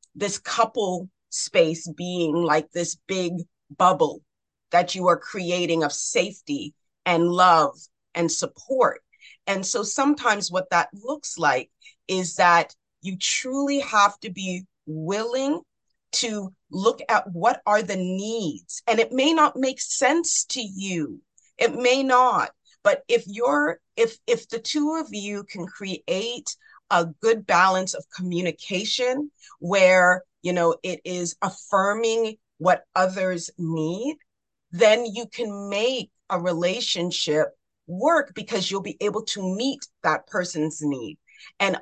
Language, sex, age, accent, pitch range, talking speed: English, female, 30-49, American, 175-240 Hz, 135 wpm